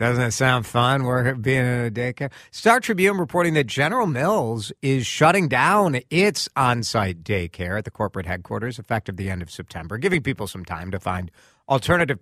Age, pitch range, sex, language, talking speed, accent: 50-69, 95-135 Hz, male, English, 180 wpm, American